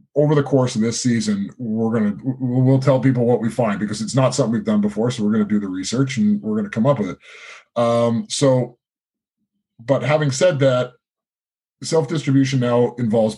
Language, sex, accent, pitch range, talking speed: English, male, American, 105-135 Hz, 195 wpm